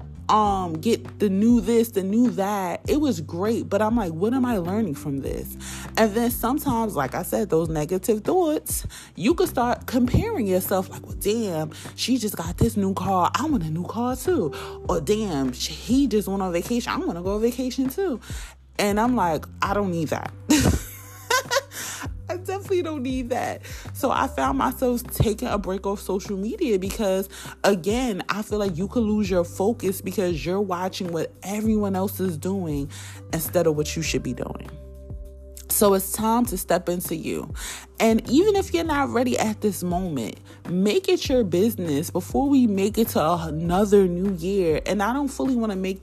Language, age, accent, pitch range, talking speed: English, 30-49, American, 170-235 Hz, 190 wpm